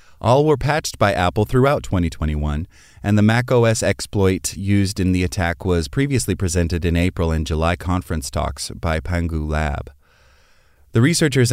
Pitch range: 80-110 Hz